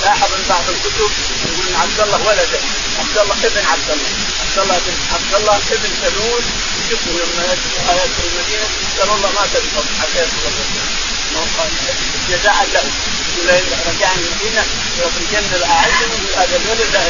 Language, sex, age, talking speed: Arabic, male, 30-49, 145 wpm